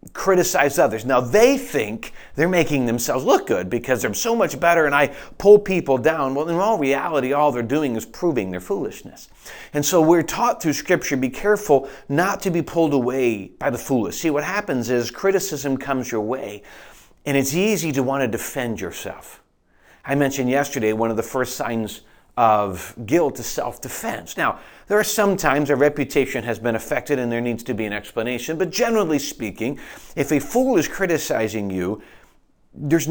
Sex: male